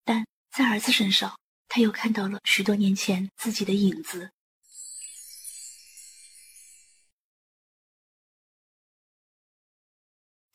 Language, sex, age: Chinese, female, 20-39